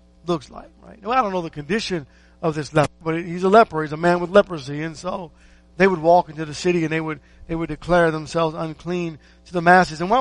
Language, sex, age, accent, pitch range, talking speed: English, male, 50-69, American, 150-195 Hz, 245 wpm